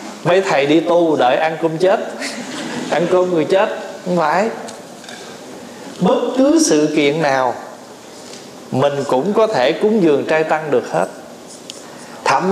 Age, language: 20-39, Vietnamese